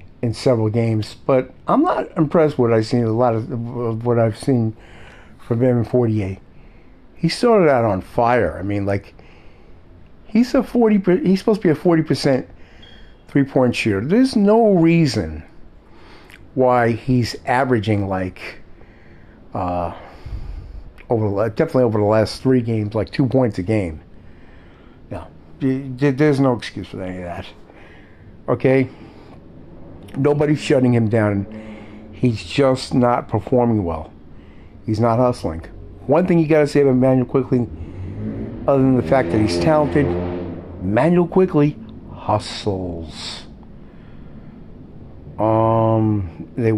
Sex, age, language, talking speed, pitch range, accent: male, 50-69, English, 135 wpm, 100-130 Hz, American